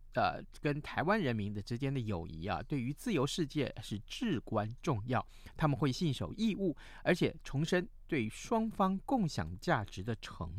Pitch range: 105-150 Hz